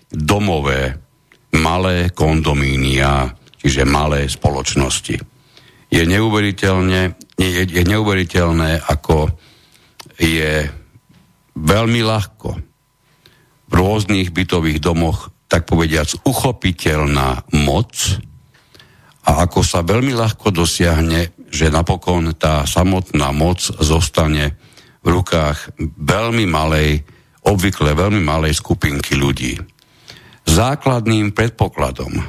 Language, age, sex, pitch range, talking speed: Slovak, 60-79, male, 75-100 Hz, 85 wpm